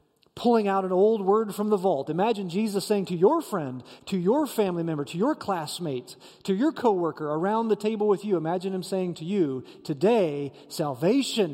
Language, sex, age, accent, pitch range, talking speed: English, male, 40-59, American, 135-195 Hz, 185 wpm